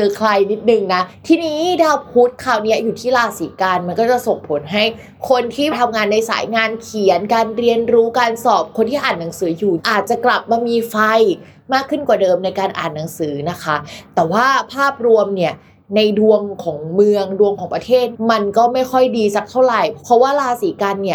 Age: 20-39